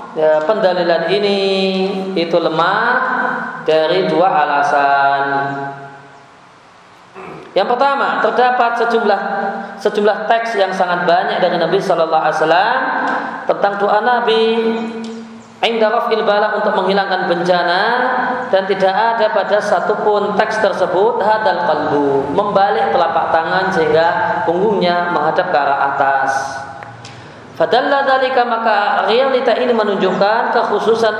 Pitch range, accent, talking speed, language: 165-220 Hz, native, 100 wpm, Indonesian